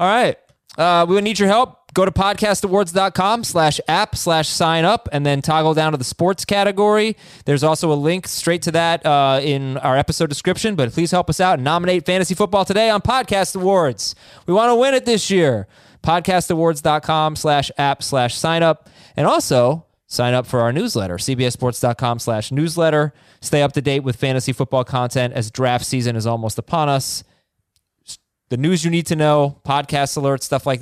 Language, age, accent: English, 20-39, American